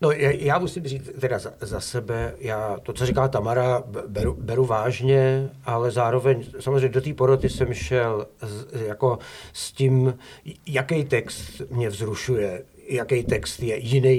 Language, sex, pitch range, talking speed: Slovak, male, 105-130 Hz, 155 wpm